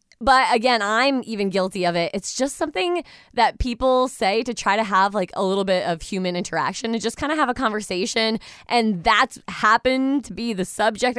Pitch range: 185-260 Hz